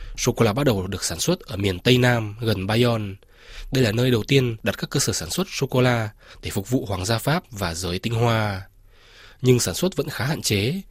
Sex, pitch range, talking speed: male, 100-135 Hz, 225 wpm